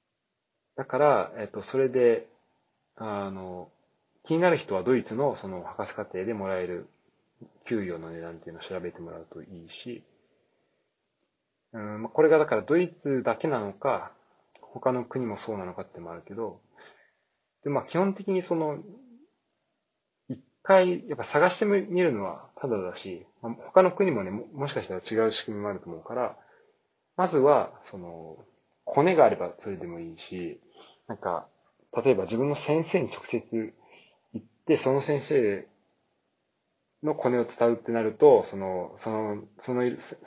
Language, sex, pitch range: Japanese, male, 105-170 Hz